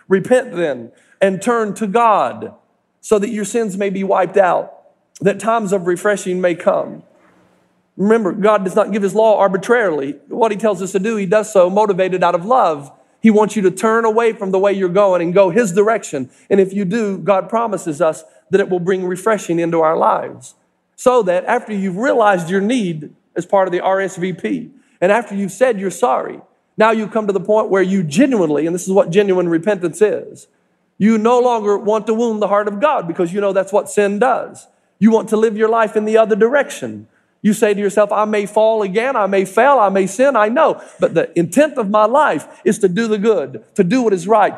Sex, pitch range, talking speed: male, 185-225 Hz, 220 wpm